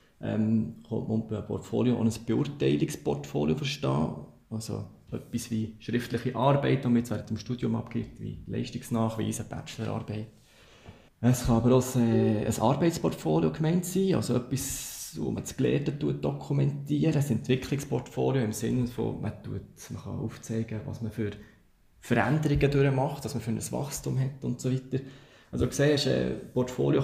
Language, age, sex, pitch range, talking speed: German, 20-39, male, 110-130 Hz, 140 wpm